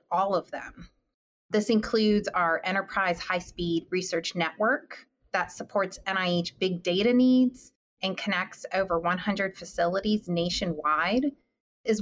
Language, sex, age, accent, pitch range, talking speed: English, female, 30-49, American, 170-215 Hz, 115 wpm